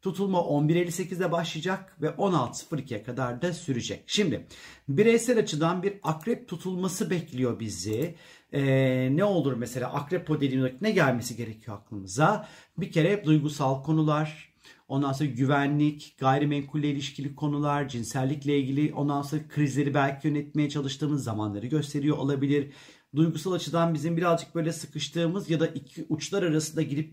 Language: Turkish